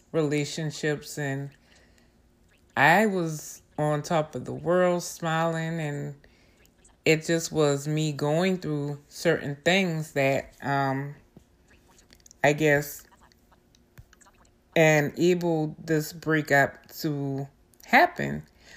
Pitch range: 140-165 Hz